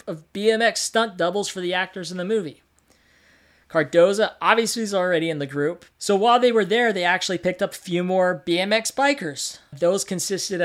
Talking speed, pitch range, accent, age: 185 wpm, 155-200 Hz, American, 40-59